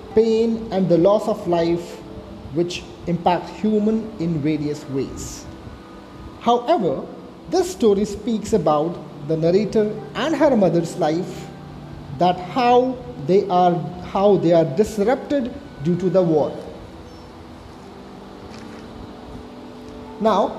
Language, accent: English, Indian